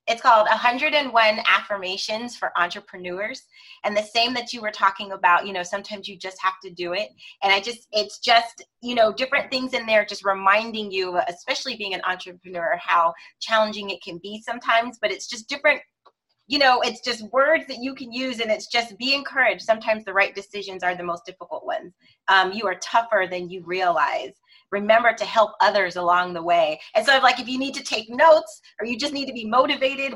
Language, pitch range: English, 195-260 Hz